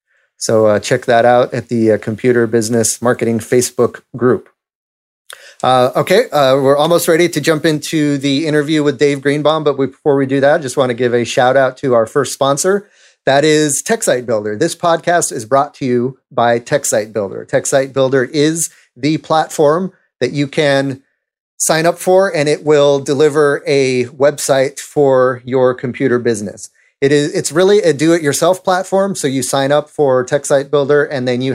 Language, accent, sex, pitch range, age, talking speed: English, American, male, 120-150 Hz, 30-49, 180 wpm